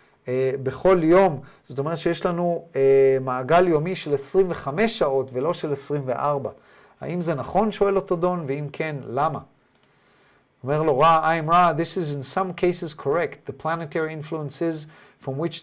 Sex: male